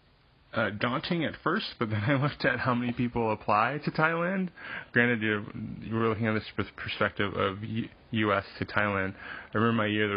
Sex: male